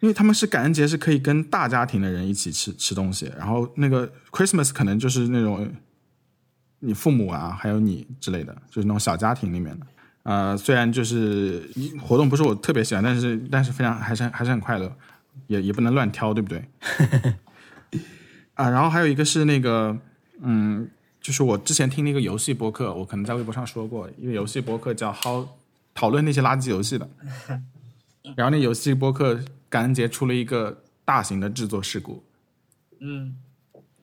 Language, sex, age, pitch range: Chinese, male, 20-39, 110-135 Hz